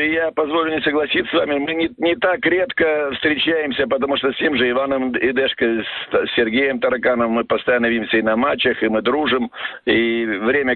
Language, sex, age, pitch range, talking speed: Russian, male, 50-69, 130-155 Hz, 190 wpm